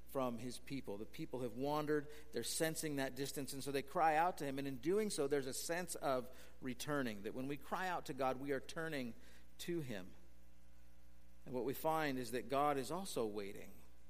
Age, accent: 50-69, American